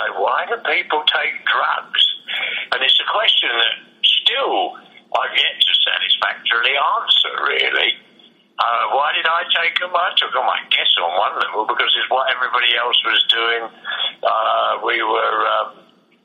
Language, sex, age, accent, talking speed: English, male, 50-69, British, 150 wpm